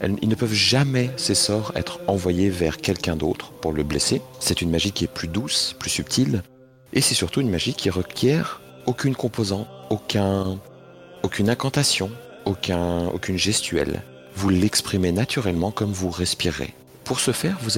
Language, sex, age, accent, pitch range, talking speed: French, male, 40-59, French, 80-115 Hz, 165 wpm